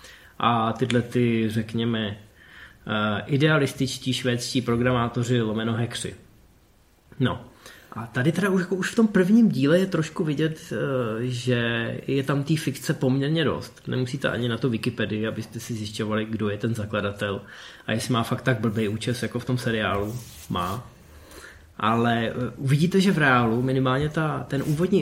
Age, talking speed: 20-39, 150 wpm